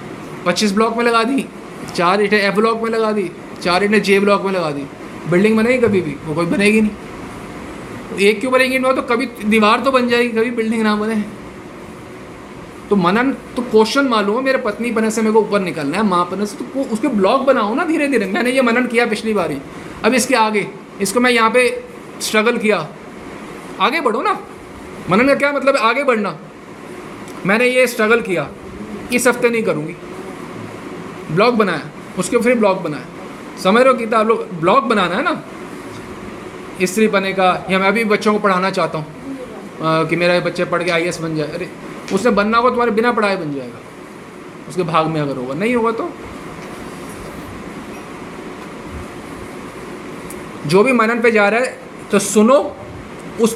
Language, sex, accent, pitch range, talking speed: Hindi, male, native, 185-240 Hz, 175 wpm